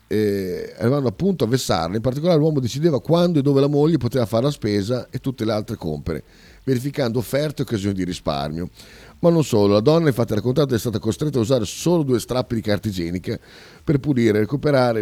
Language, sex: Italian, male